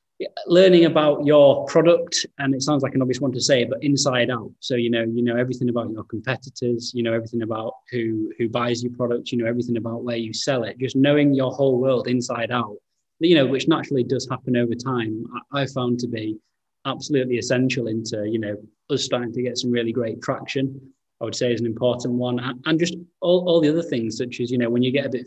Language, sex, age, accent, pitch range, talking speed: English, male, 20-39, British, 115-135 Hz, 235 wpm